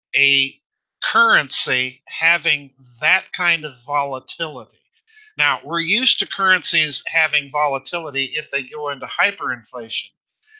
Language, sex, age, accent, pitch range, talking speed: English, male, 50-69, American, 140-180 Hz, 110 wpm